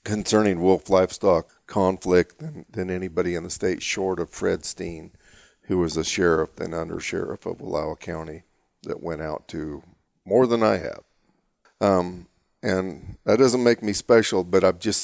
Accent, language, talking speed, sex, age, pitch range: American, English, 165 wpm, male, 50-69, 90-110 Hz